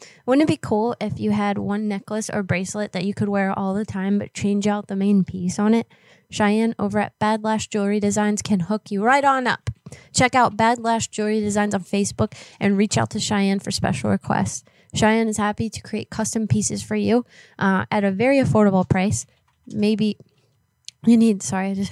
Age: 20-39